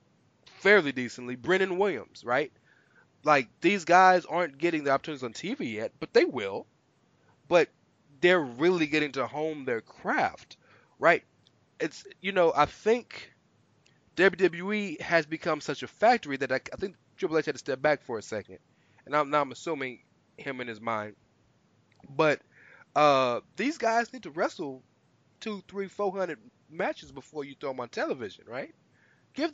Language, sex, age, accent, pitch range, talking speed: English, male, 20-39, American, 140-200 Hz, 160 wpm